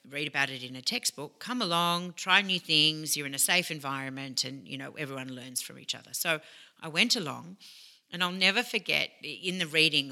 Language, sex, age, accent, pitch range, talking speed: English, female, 40-59, Australian, 135-175 Hz, 210 wpm